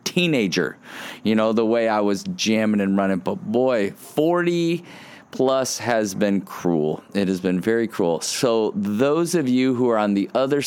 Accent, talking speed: American, 175 wpm